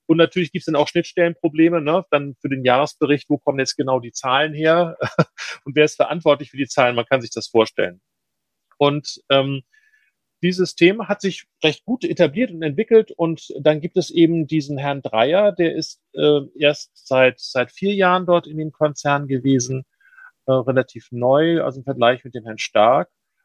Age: 40-59